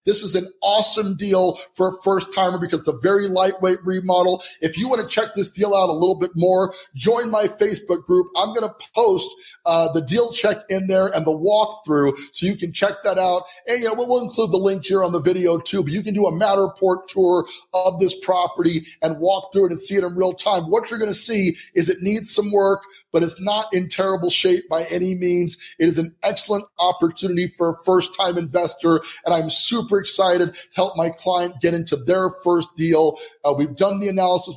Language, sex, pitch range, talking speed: English, male, 170-195 Hz, 220 wpm